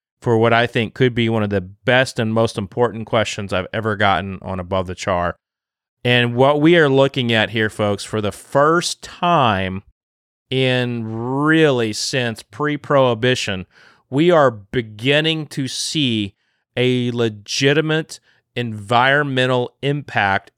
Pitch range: 110-140 Hz